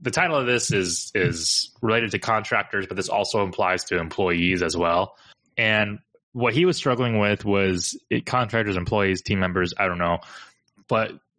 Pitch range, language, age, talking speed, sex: 95-120 Hz, English, 20-39, 175 wpm, male